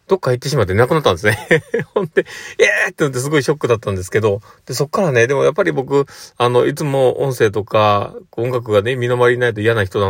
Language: Japanese